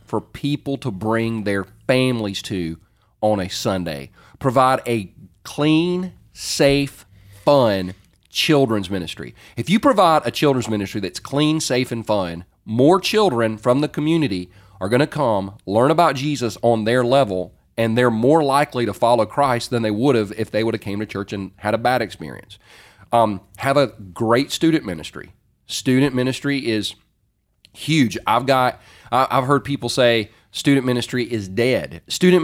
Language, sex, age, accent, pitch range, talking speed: English, male, 40-59, American, 100-135 Hz, 160 wpm